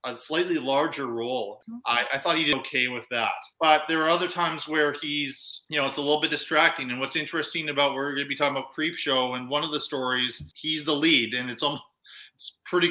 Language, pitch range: English, 130-155 Hz